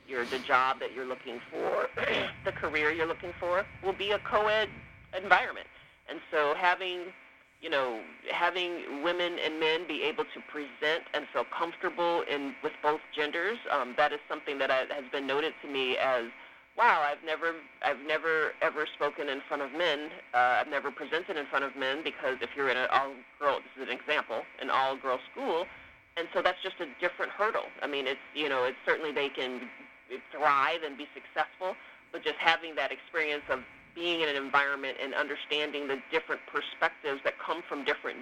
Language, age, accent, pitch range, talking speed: English, 40-59, American, 140-180 Hz, 190 wpm